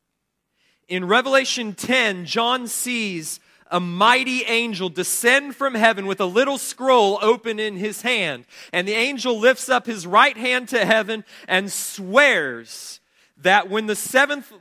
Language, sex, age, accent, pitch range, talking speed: English, male, 40-59, American, 190-245 Hz, 145 wpm